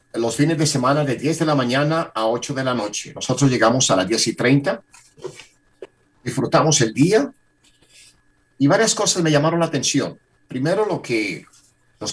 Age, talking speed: 50-69, 180 wpm